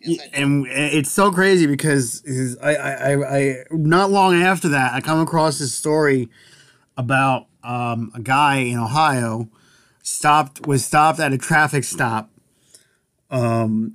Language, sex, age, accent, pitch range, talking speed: English, male, 30-49, American, 130-160 Hz, 135 wpm